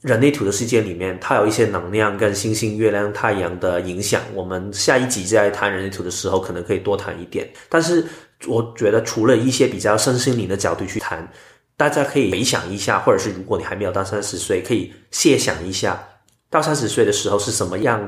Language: Chinese